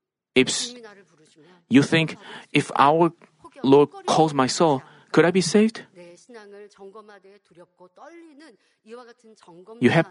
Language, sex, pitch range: Korean, male, 145-220 Hz